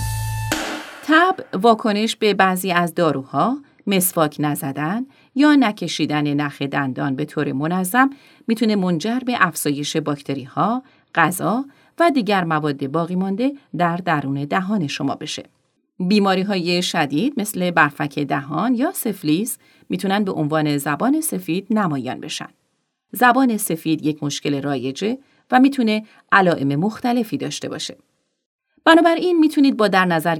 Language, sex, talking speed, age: Persian, female, 125 wpm, 30-49